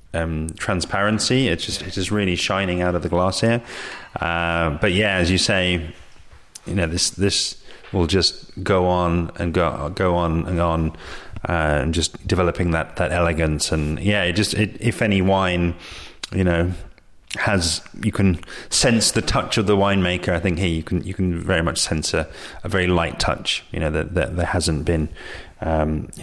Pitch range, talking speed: 85-105 Hz, 190 wpm